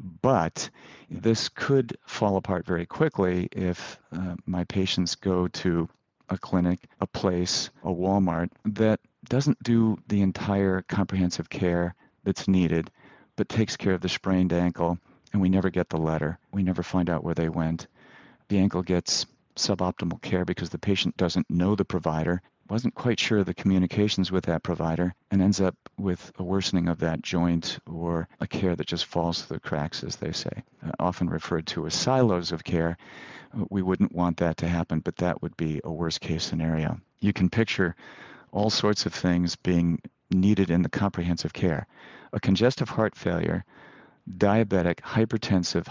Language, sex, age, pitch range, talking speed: English, male, 50-69, 85-100 Hz, 170 wpm